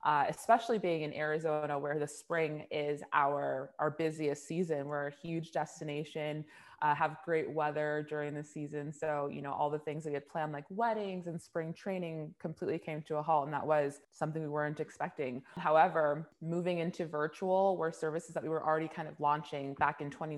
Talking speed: 195 wpm